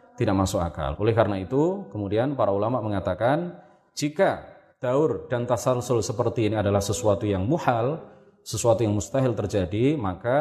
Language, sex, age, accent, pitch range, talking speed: Indonesian, male, 30-49, native, 115-175 Hz, 145 wpm